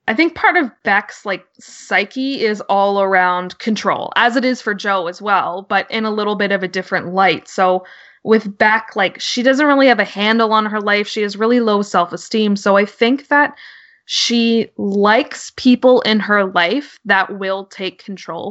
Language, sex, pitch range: English, female, 190-230 Hz